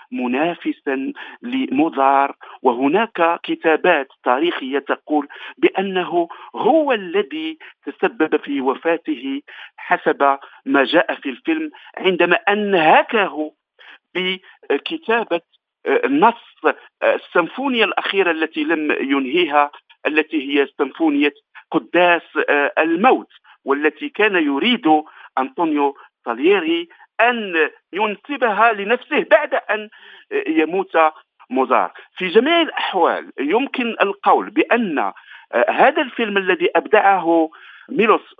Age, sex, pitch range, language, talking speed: 50-69, male, 175-290 Hz, Arabic, 85 wpm